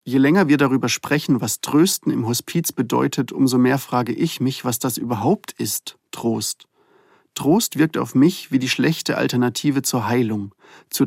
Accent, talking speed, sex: German, 170 wpm, male